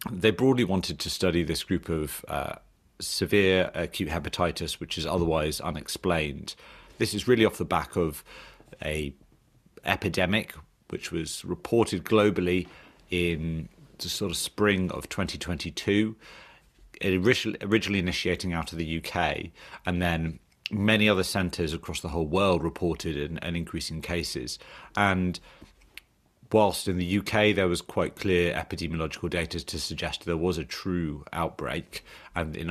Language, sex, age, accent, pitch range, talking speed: English, male, 40-59, British, 80-95 Hz, 145 wpm